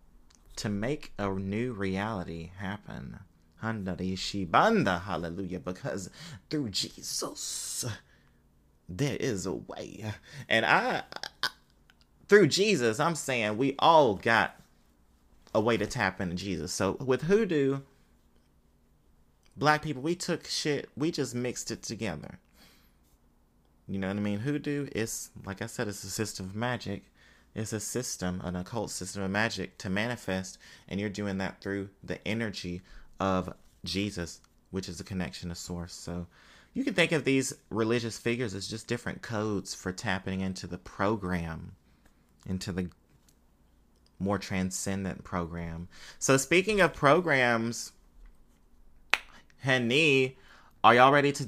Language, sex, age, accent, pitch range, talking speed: English, male, 30-49, American, 85-120 Hz, 135 wpm